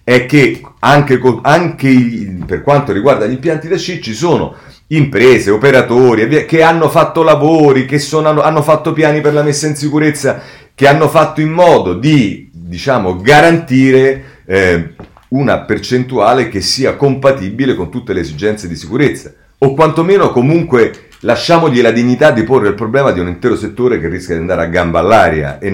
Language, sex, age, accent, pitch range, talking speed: Italian, male, 40-59, native, 95-150 Hz, 160 wpm